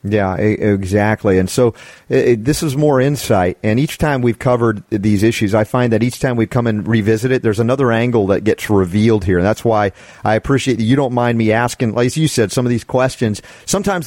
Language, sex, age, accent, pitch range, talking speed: English, male, 40-59, American, 105-130 Hz, 225 wpm